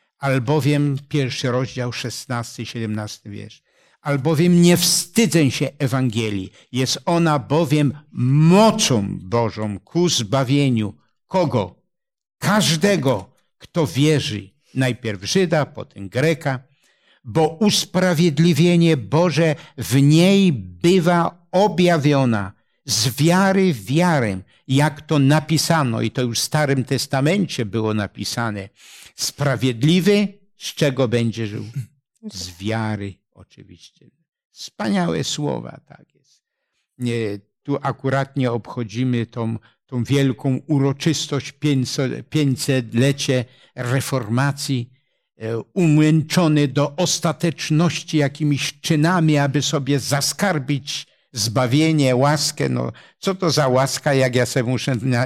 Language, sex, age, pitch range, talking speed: Polish, male, 60-79, 120-160 Hz, 95 wpm